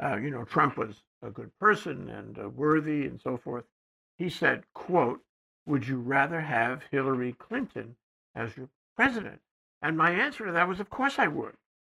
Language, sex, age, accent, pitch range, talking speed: English, male, 60-79, American, 140-205 Hz, 185 wpm